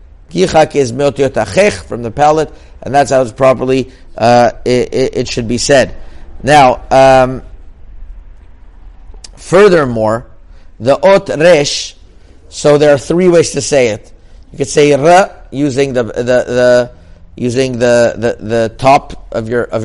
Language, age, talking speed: English, 50-69, 140 wpm